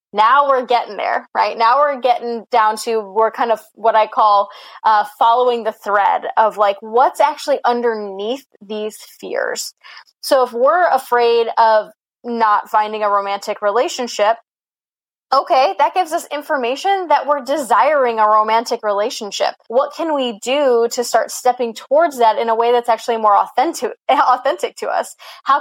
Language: English